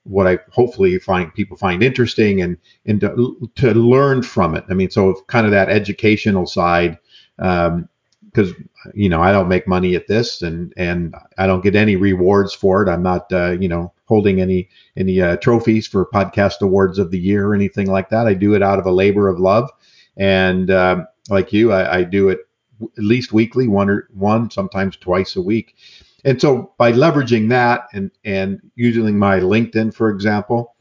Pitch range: 95-115 Hz